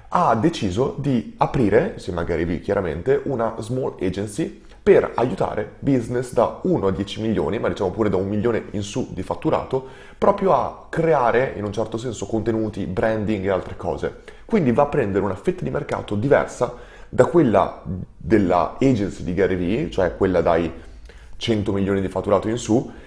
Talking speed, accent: 170 wpm, native